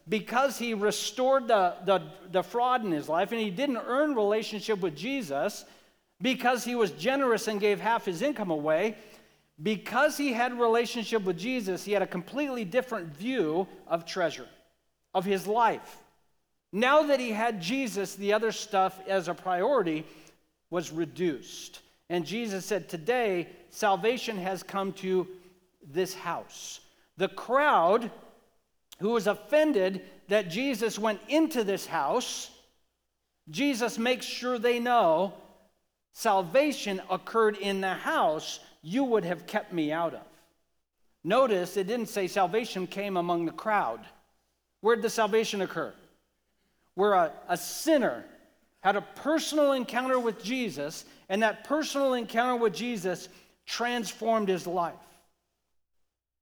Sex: male